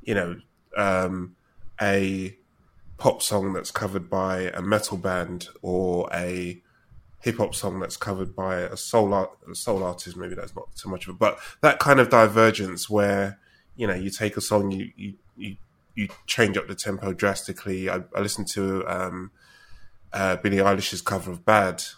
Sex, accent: male, British